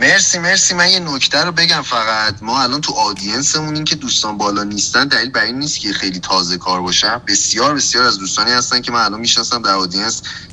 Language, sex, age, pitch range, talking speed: Persian, male, 30-49, 105-145 Hz, 205 wpm